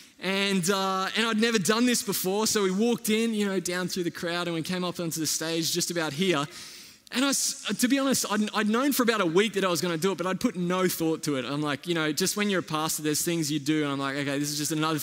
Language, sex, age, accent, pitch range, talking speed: English, male, 20-39, Australian, 165-225 Hz, 300 wpm